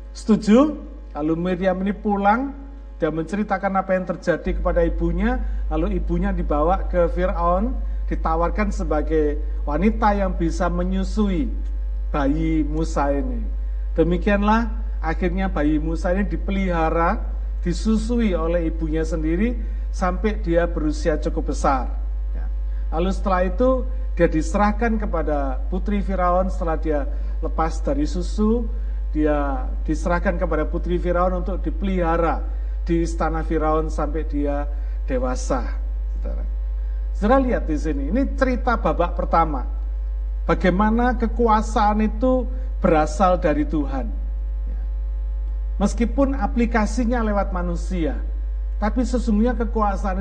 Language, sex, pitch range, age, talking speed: Malay, male, 150-210 Hz, 50-69, 105 wpm